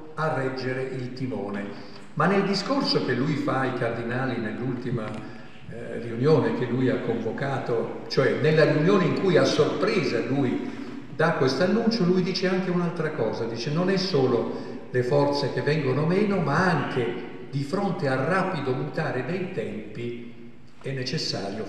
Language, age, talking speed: Italian, 50-69, 150 wpm